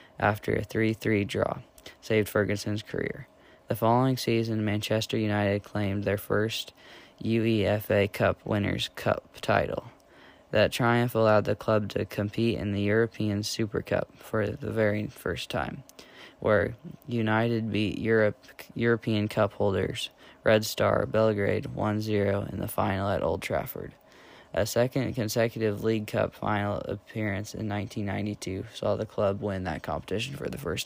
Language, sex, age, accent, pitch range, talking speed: English, male, 10-29, American, 100-110 Hz, 140 wpm